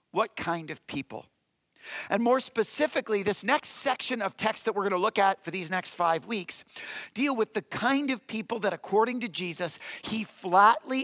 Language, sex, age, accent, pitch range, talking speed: English, male, 50-69, American, 180-230 Hz, 190 wpm